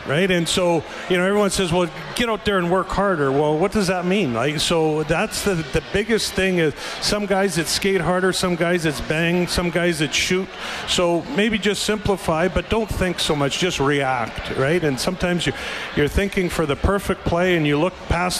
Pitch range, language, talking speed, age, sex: 150-185 Hz, English, 210 wpm, 50-69, male